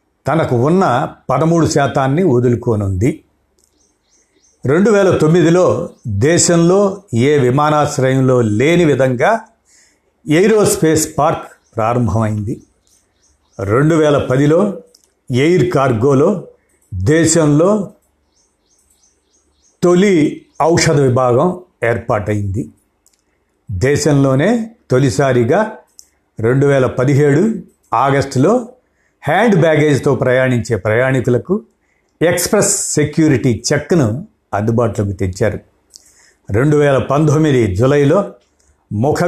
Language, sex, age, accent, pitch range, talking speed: Telugu, male, 60-79, native, 115-160 Hz, 70 wpm